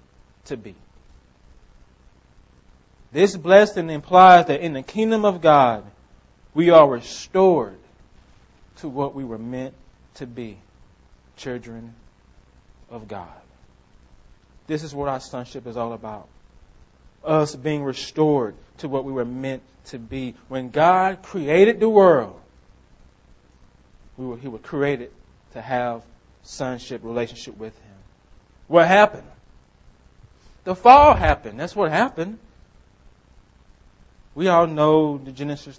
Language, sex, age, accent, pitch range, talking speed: English, male, 30-49, American, 115-160 Hz, 120 wpm